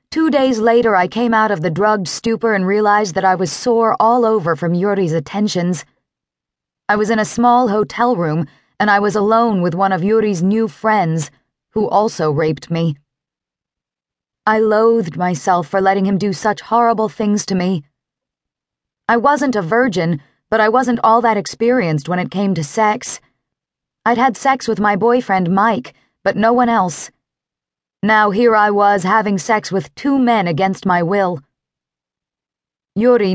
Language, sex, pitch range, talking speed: English, female, 165-220 Hz, 165 wpm